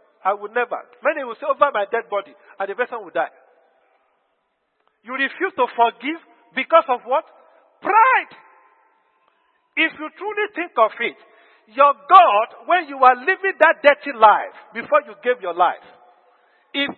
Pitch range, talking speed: 245-330 Hz, 155 wpm